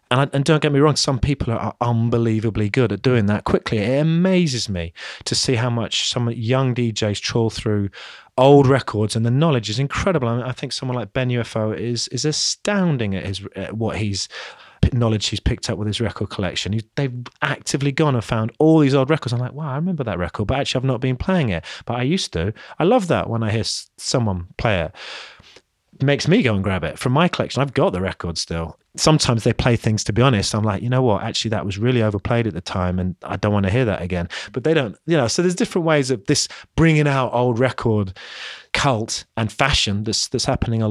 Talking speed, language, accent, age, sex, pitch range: 225 wpm, English, British, 30-49, male, 105-140 Hz